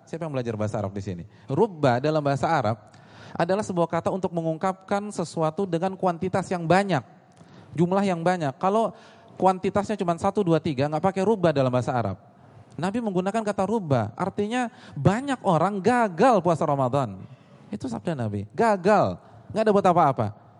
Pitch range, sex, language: 115-180 Hz, male, Indonesian